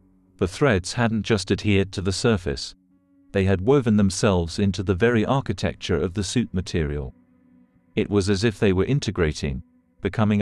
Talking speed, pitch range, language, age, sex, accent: 160 wpm, 90-105 Hz, English, 50-69, male, British